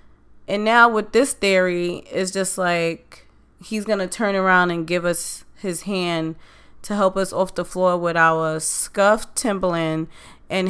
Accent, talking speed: American, 165 wpm